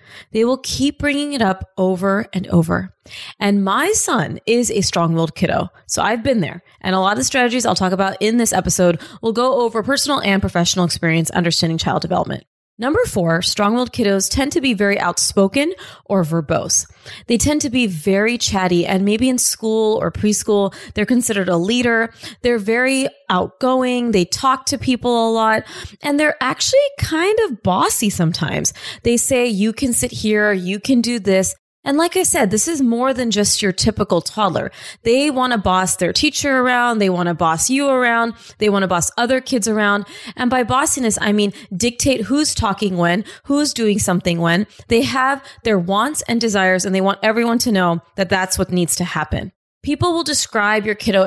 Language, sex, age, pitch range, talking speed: English, female, 20-39, 190-255 Hz, 190 wpm